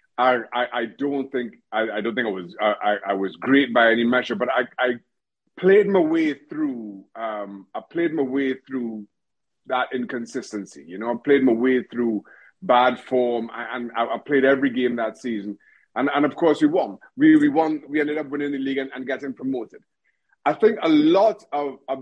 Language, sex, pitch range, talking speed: English, male, 120-170 Hz, 200 wpm